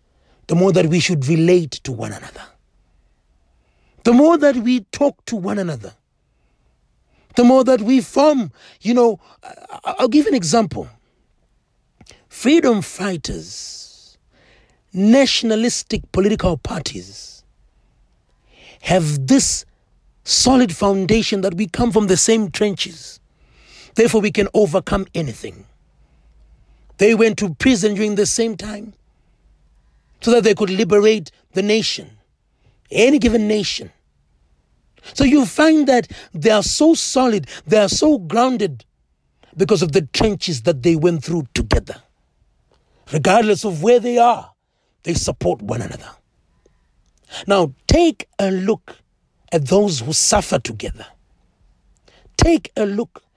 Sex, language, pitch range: male, English, 160-235 Hz